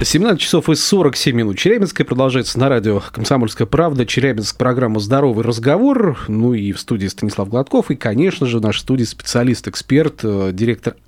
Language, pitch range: Russian, 110-140 Hz